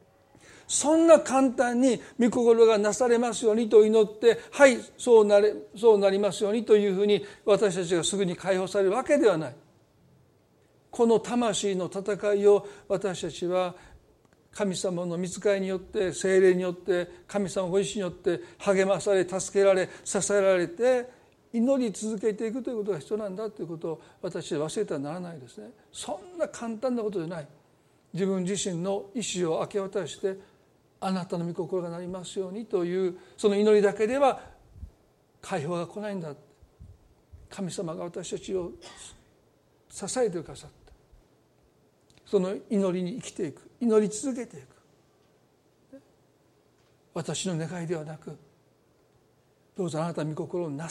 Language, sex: Japanese, male